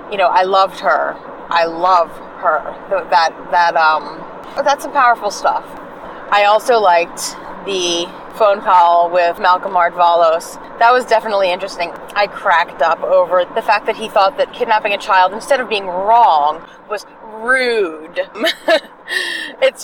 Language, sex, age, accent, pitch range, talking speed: English, female, 30-49, American, 170-215 Hz, 145 wpm